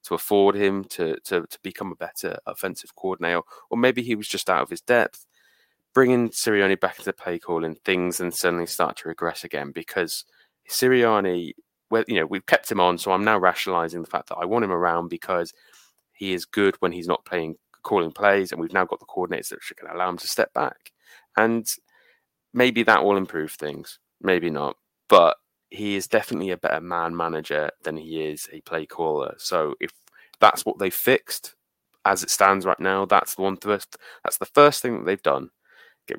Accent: British